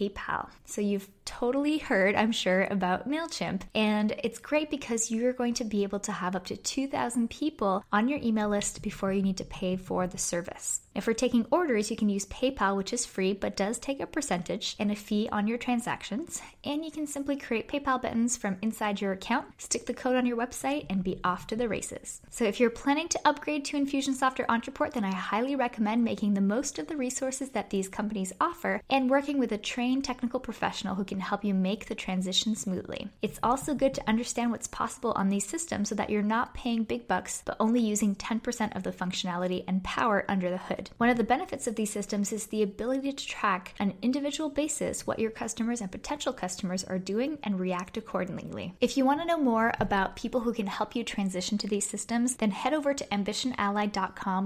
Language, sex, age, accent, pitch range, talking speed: English, female, 10-29, American, 200-255 Hz, 215 wpm